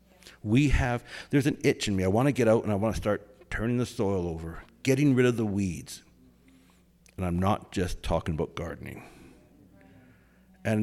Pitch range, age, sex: 90-145 Hz, 60-79, male